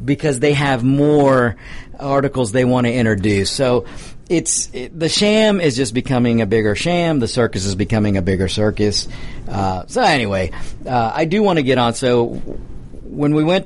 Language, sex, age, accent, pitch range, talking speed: English, male, 50-69, American, 115-160 Hz, 180 wpm